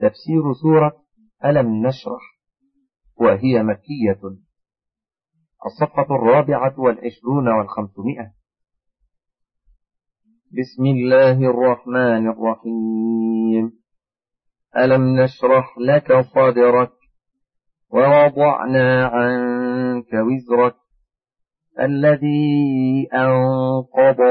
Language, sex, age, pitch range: Arabic, male, 40-59, 120-145 Hz